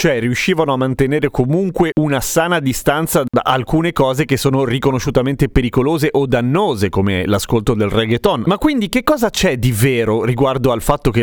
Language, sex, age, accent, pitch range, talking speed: Italian, male, 30-49, native, 115-155 Hz, 170 wpm